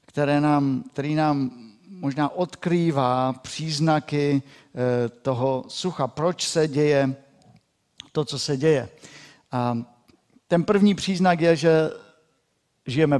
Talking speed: 105 wpm